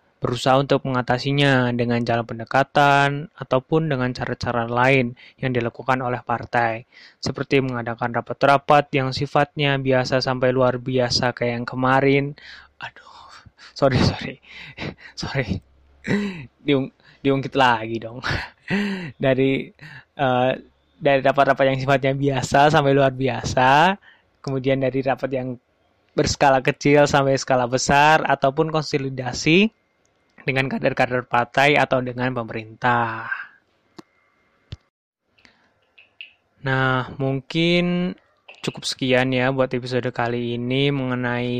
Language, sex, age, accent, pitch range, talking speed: Indonesian, male, 20-39, native, 120-140 Hz, 100 wpm